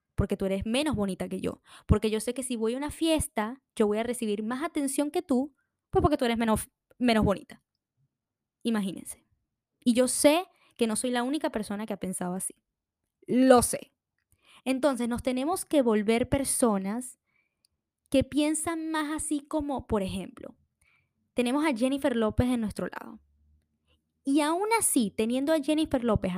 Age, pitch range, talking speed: 10-29, 205-280 Hz, 170 wpm